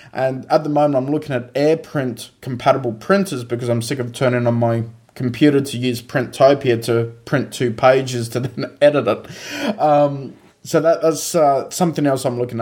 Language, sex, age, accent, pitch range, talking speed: English, male, 20-39, Australian, 135-170 Hz, 180 wpm